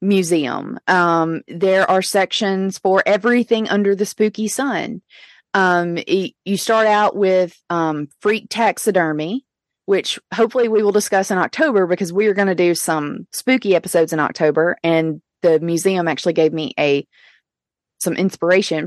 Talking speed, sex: 145 wpm, female